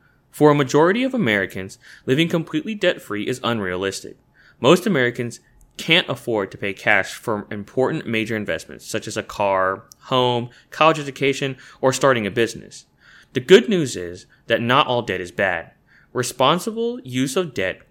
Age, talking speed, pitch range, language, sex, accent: 20-39, 155 wpm, 105-145 Hz, English, male, American